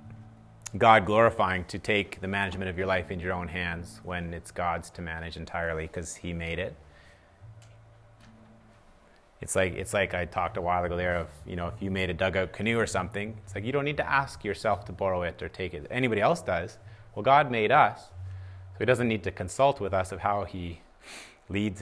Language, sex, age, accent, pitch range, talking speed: English, male, 30-49, American, 90-120 Hz, 210 wpm